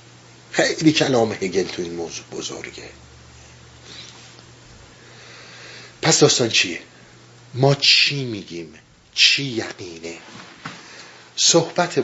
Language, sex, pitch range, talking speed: Persian, male, 120-165 Hz, 85 wpm